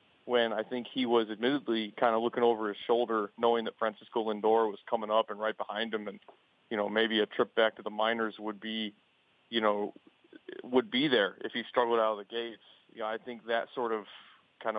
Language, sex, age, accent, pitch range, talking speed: English, male, 30-49, American, 110-120 Hz, 225 wpm